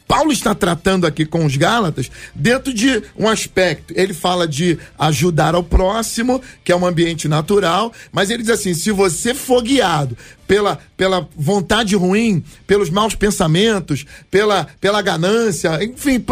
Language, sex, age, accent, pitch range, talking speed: Portuguese, male, 40-59, Brazilian, 170-220 Hz, 150 wpm